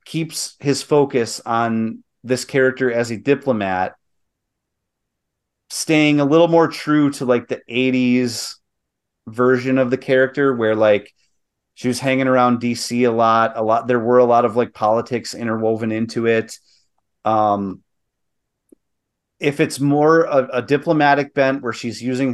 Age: 30-49